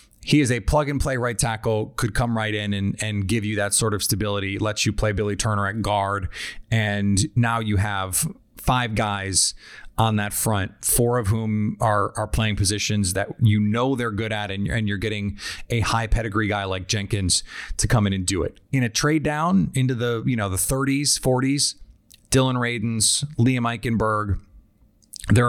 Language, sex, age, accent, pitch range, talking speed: English, male, 30-49, American, 105-120 Hz, 185 wpm